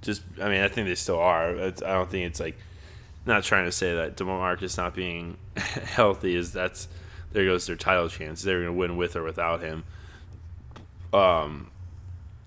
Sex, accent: male, American